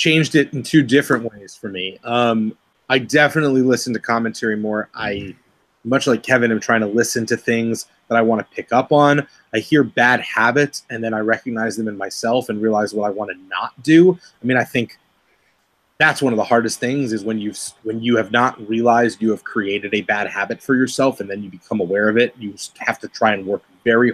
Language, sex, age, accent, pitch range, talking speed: English, male, 30-49, American, 110-140 Hz, 225 wpm